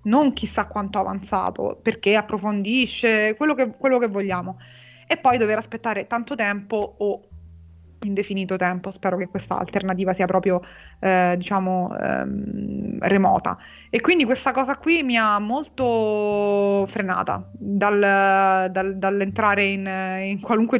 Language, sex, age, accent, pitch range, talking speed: Italian, female, 20-39, native, 185-220 Hz, 120 wpm